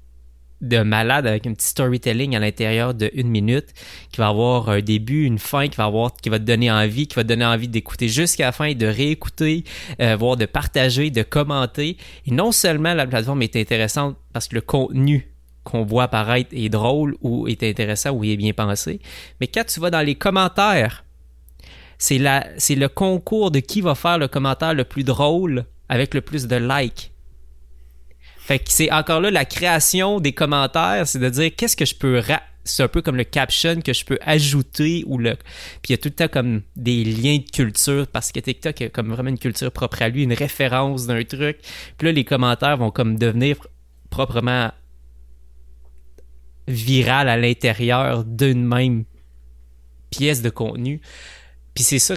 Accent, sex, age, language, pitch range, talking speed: Canadian, male, 20-39, English, 110-145 Hz, 190 wpm